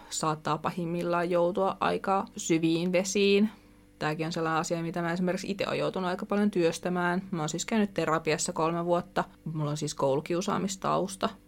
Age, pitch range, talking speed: 20-39, 160-195 Hz, 155 wpm